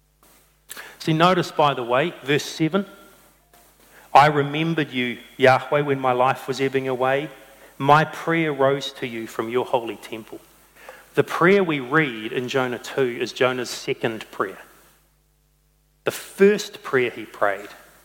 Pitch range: 125-155 Hz